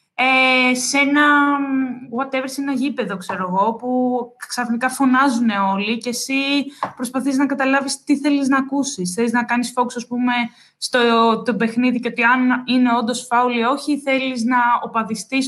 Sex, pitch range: female, 215-280 Hz